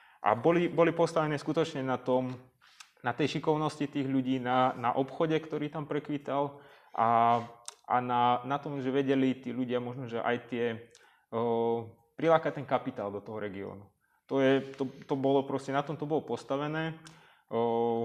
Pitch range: 120-145 Hz